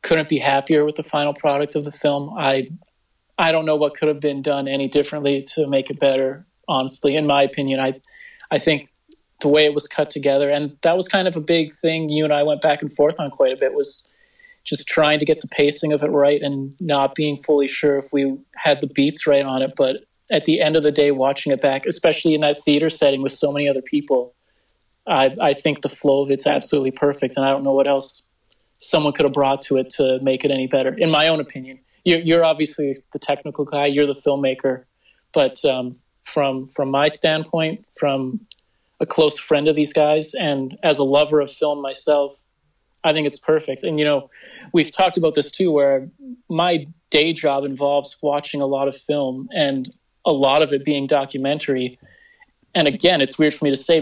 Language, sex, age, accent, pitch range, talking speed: English, male, 30-49, American, 140-155 Hz, 220 wpm